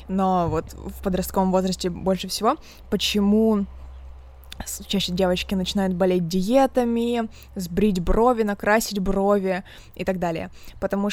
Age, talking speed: 20-39, 115 wpm